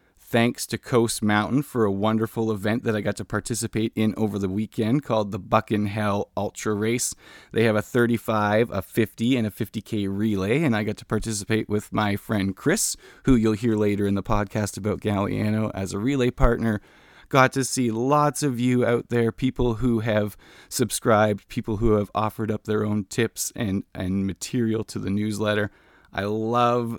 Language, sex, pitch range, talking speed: English, male, 100-115 Hz, 185 wpm